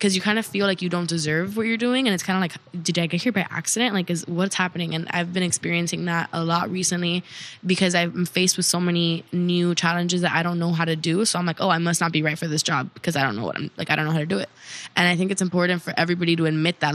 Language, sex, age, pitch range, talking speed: English, female, 10-29, 160-180 Hz, 310 wpm